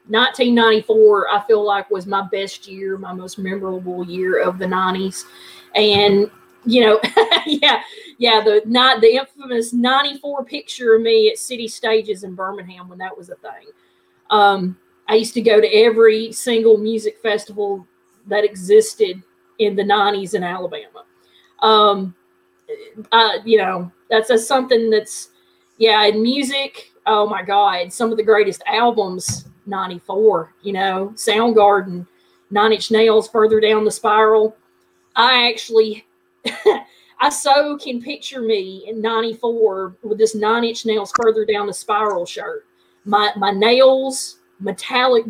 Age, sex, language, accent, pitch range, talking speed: 30-49, female, English, American, 200-245 Hz, 145 wpm